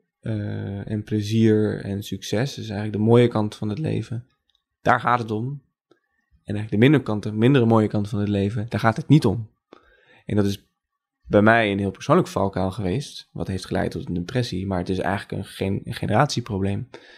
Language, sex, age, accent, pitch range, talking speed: Dutch, male, 20-39, Dutch, 105-120 Hz, 195 wpm